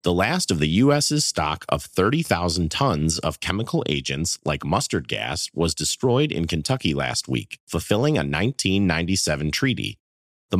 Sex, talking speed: male, 145 wpm